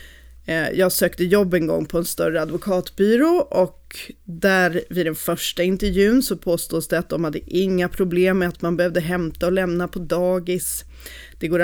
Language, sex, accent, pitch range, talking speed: Swedish, female, native, 170-215 Hz, 175 wpm